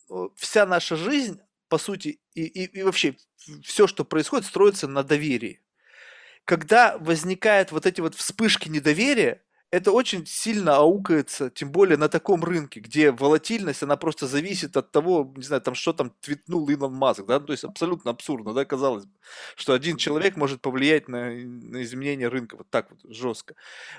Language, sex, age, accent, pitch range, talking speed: Russian, male, 20-39, native, 145-195 Hz, 165 wpm